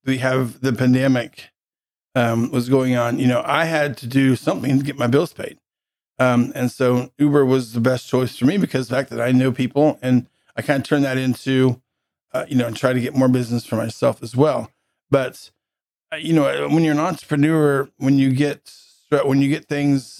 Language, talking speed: English, 210 wpm